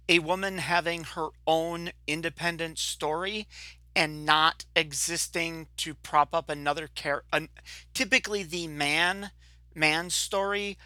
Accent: American